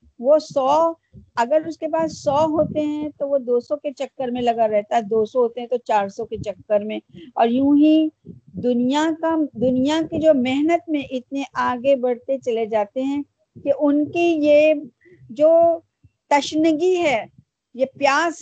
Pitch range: 235-305 Hz